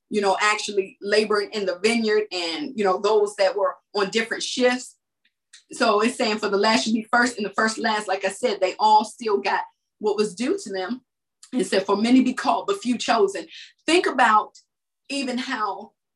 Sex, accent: female, American